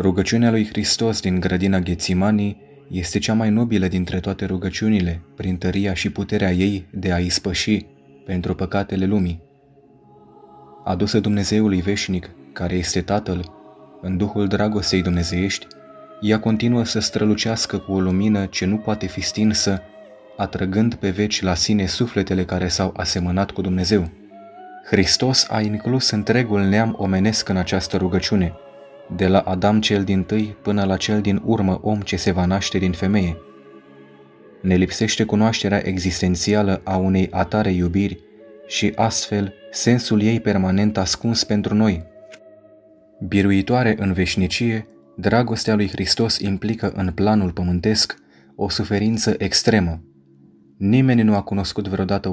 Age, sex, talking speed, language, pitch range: 20-39, male, 135 wpm, Romanian, 95-110 Hz